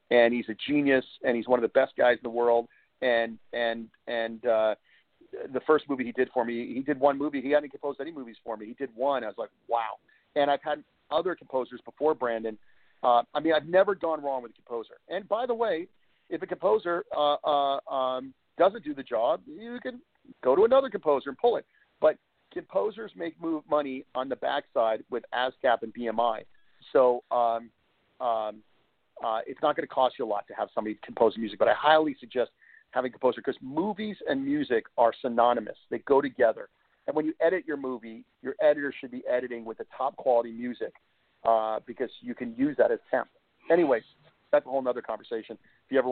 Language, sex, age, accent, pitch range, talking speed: English, male, 40-59, American, 120-165 Hz, 210 wpm